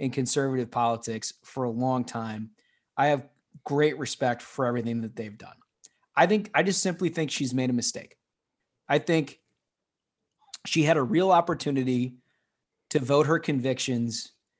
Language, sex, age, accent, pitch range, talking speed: English, male, 30-49, American, 125-175 Hz, 150 wpm